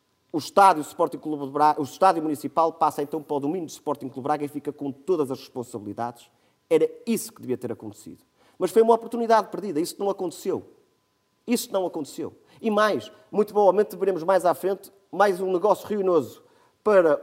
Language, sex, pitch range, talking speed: Portuguese, male, 150-210 Hz, 180 wpm